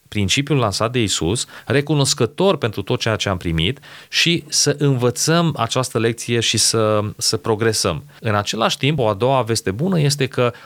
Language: Romanian